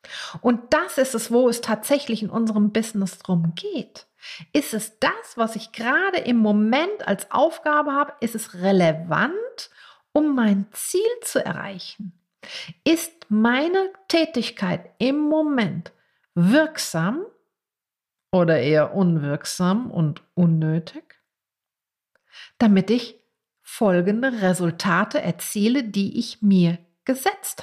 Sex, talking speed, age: female, 110 wpm, 50-69